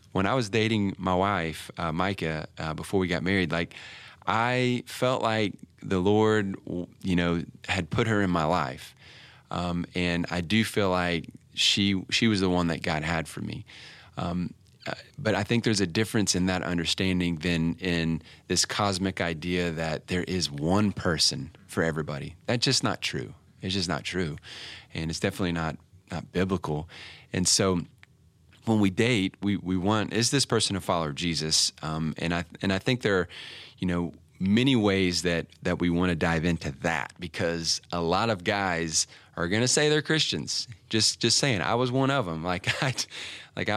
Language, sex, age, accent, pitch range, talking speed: English, male, 30-49, American, 85-110 Hz, 185 wpm